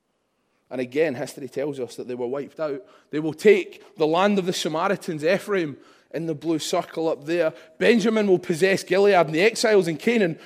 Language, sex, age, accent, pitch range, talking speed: English, male, 20-39, British, 165-225 Hz, 195 wpm